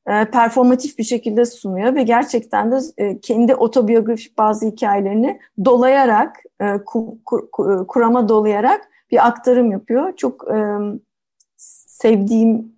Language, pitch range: Turkish, 205-250 Hz